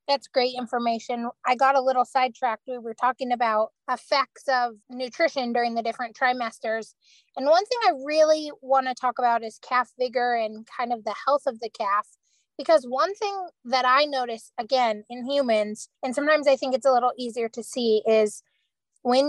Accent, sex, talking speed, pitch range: American, female, 185 wpm, 220-265 Hz